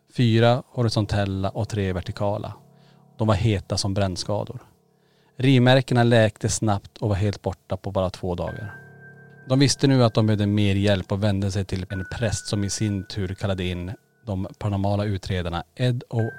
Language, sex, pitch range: Swedish, male, 100-120 Hz